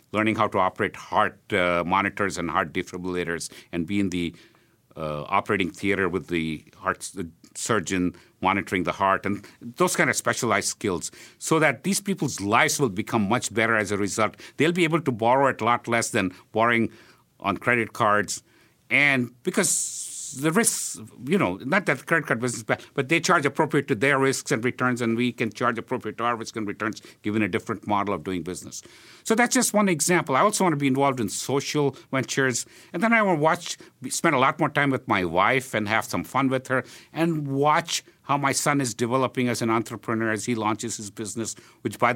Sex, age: male, 50-69